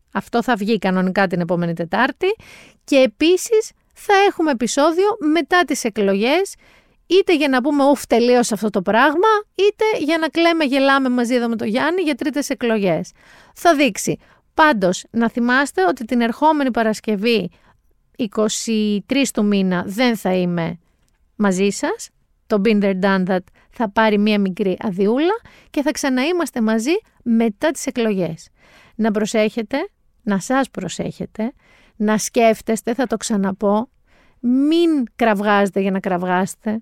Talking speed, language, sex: 135 wpm, Greek, female